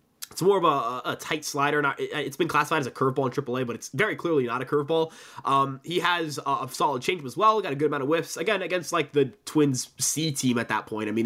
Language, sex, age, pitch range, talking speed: English, male, 20-39, 135-160 Hz, 250 wpm